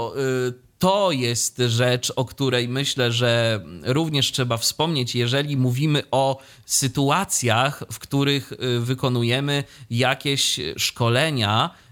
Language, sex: Polish, male